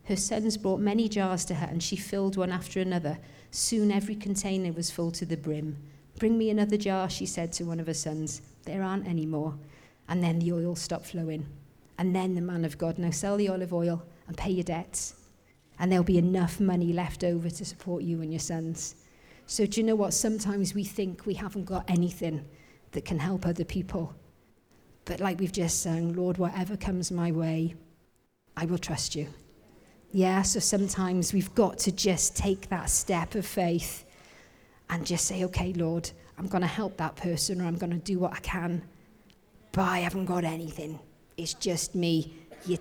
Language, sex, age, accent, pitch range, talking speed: English, female, 40-59, British, 160-190 Hz, 200 wpm